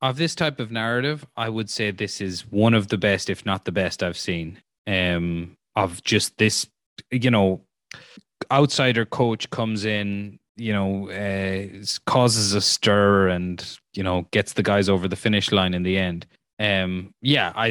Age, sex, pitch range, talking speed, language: 20-39, male, 105-135 Hz, 175 wpm, English